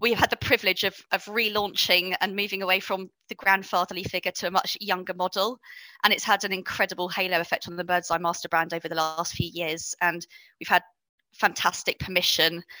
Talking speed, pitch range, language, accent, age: 195 wpm, 175-200 Hz, English, British, 20-39